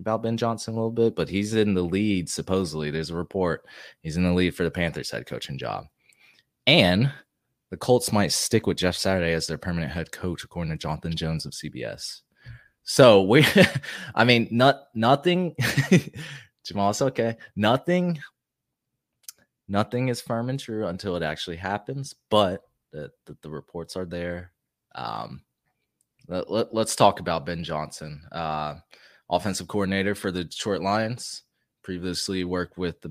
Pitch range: 85-120 Hz